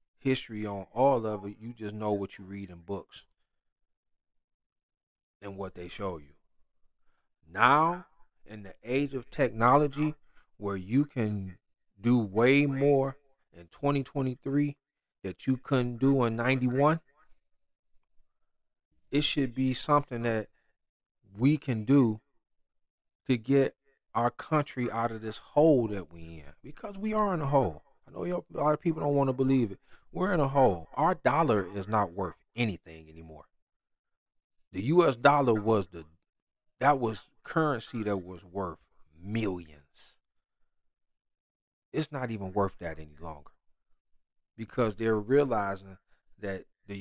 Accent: American